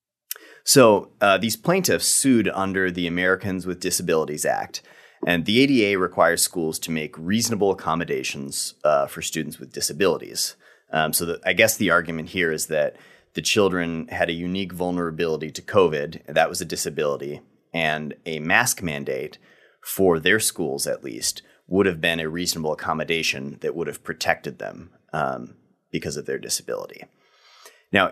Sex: male